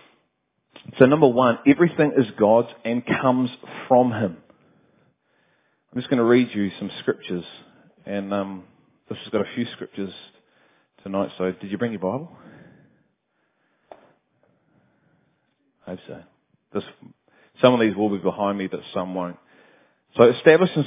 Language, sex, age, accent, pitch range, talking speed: English, male, 30-49, Australian, 105-135 Hz, 140 wpm